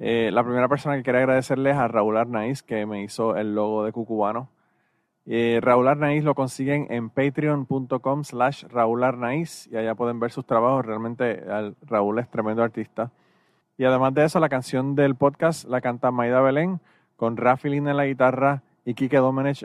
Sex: male